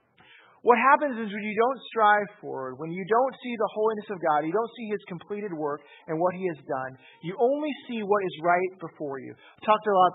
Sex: male